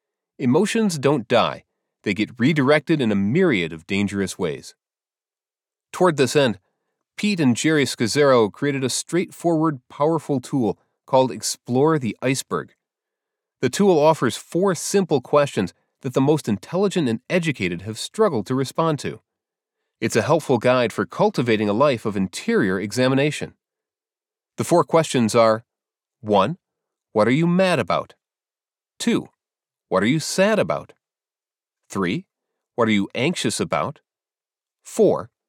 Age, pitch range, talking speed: 30-49, 115-175 Hz, 135 wpm